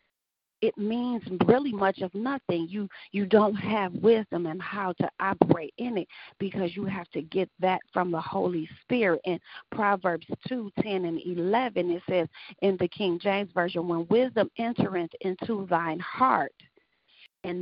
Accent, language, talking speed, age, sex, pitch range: American, English, 160 wpm, 40-59, female, 175-215 Hz